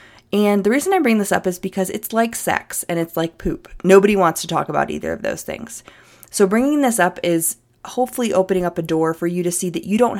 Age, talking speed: 20-39, 245 wpm